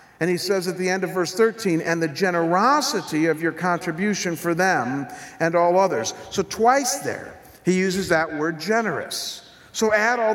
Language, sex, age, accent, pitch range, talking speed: English, male, 50-69, American, 140-200 Hz, 180 wpm